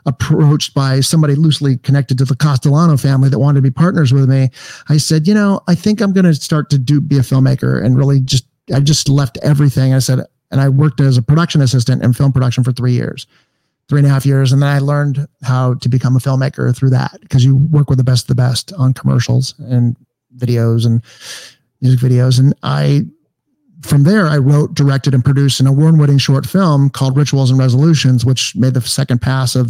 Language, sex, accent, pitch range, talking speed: English, male, American, 130-150 Hz, 220 wpm